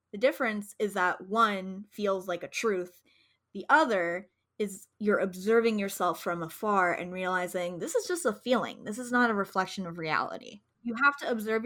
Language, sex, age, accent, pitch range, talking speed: English, female, 20-39, American, 190-275 Hz, 180 wpm